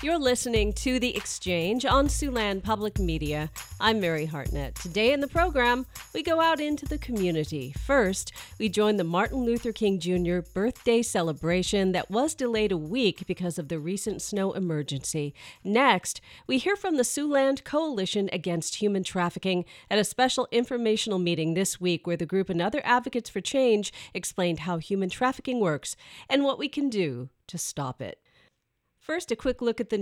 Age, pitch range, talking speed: 40-59, 180-245 Hz, 175 wpm